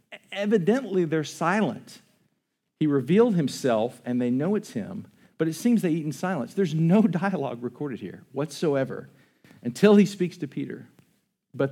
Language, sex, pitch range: English, male, 125-180 Hz